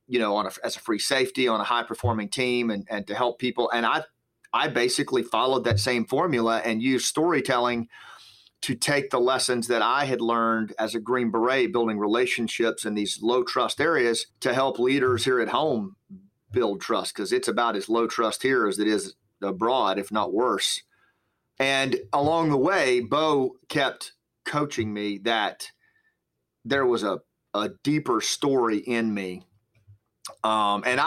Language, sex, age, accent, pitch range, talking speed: English, male, 40-59, American, 110-135 Hz, 170 wpm